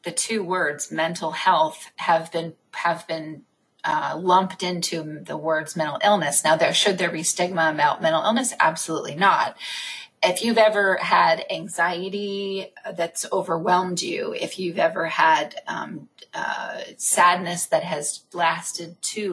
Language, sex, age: English, female, 30-49